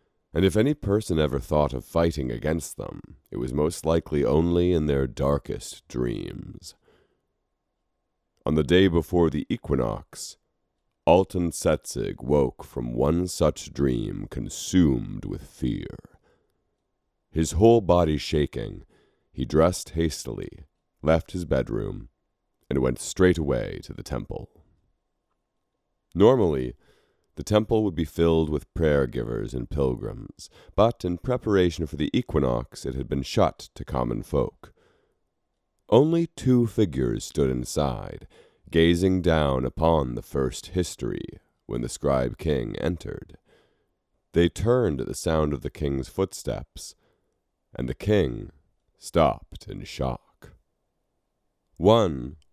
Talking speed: 120 wpm